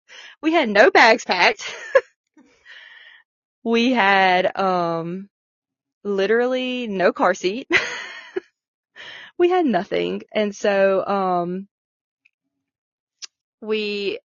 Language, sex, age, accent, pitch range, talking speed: English, female, 20-39, American, 180-210 Hz, 80 wpm